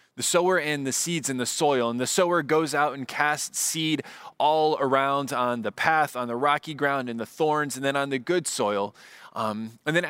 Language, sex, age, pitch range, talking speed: English, male, 20-39, 135-175 Hz, 220 wpm